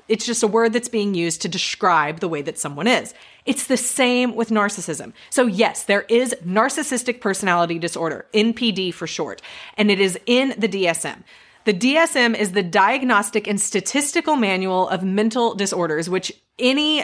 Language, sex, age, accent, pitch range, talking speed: English, female, 30-49, American, 180-245 Hz, 170 wpm